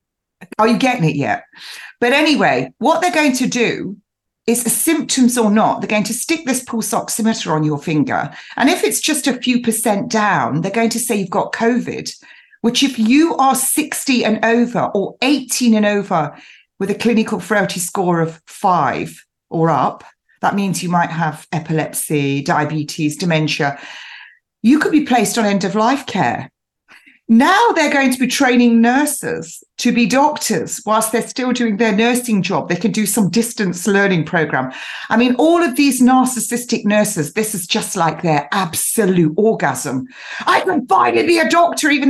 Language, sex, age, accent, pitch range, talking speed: English, female, 40-59, British, 175-255 Hz, 175 wpm